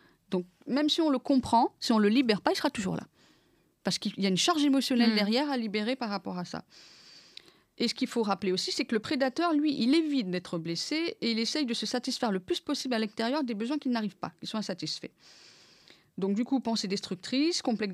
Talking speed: 235 wpm